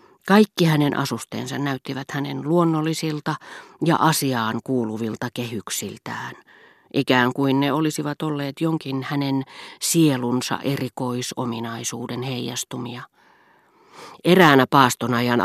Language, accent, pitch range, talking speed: Finnish, native, 120-155 Hz, 85 wpm